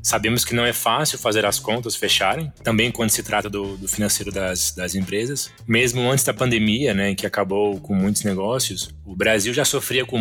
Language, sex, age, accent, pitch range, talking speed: Portuguese, male, 20-39, Brazilian, 100-120 Hz, 200 wpm